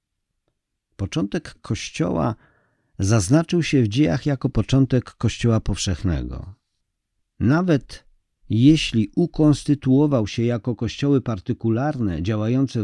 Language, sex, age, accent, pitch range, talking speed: Polish, male, 50-69, native, 100-130 Hz, 85 wpm